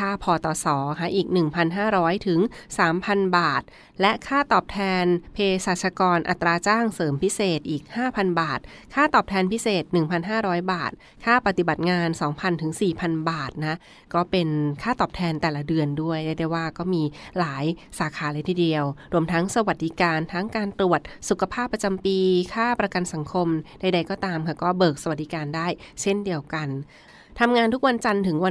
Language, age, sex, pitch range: Thai, 20-39, female, 160-190 Hz